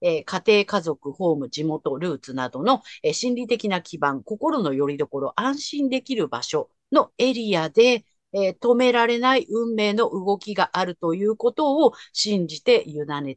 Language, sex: Japanese, female